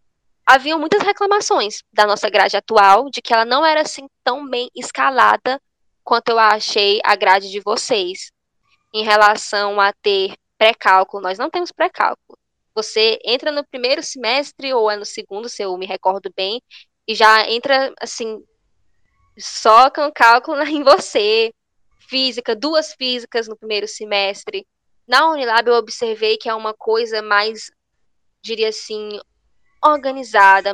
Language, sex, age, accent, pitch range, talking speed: Portuguese, female, 10-29, Brazilian, 210-275 Hz, 145 wpm